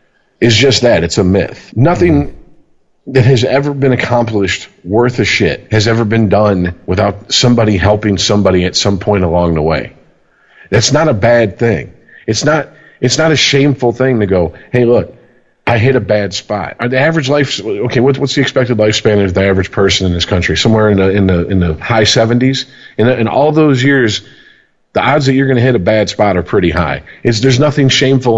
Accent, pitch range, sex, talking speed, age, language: American, 100-130 Hz, male, 205 wpm, 40-59, English